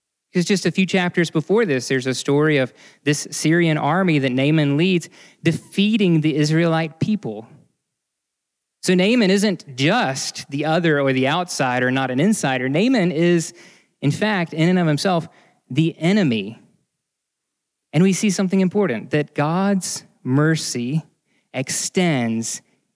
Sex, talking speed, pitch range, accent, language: male, 135 wpm, 140-185 Hz, American, English